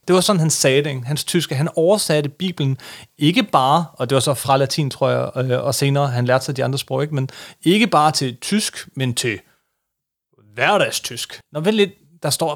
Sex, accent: male, native